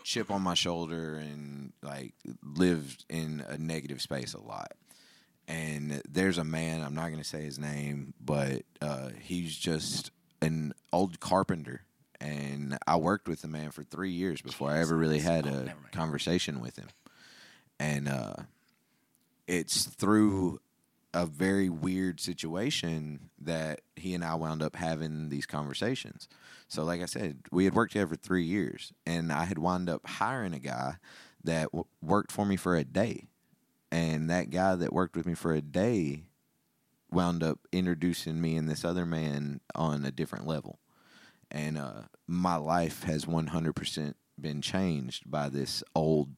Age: 20-39